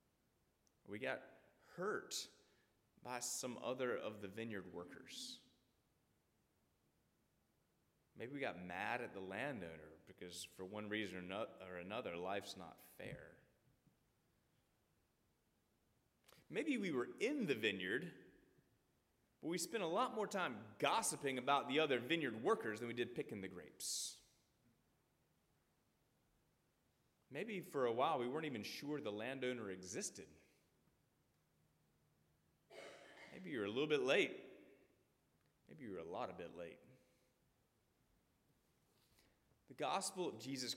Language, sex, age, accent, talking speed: English, male, 30-49, American, 120 wpm